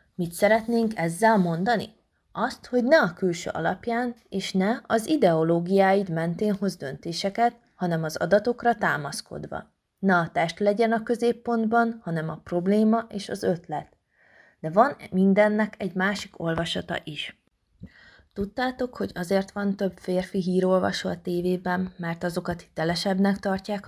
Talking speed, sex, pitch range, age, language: 135 wpm, female, 170-215 Hz, 30-49, Hungarian